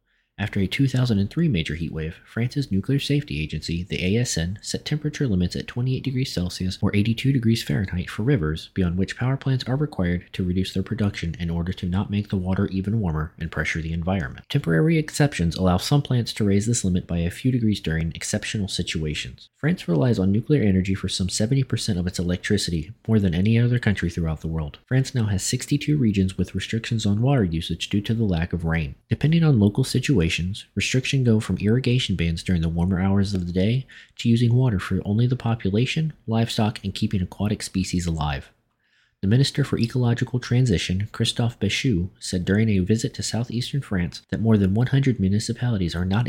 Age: 30-49